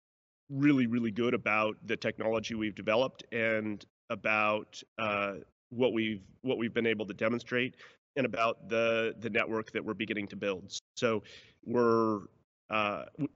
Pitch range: 105-120 Hz